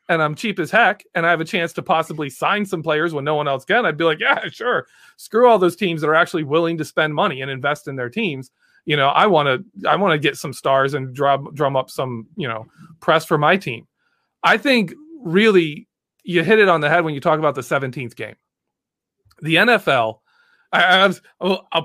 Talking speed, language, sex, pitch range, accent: 235 wpm, English, male, 150-205 Hz, American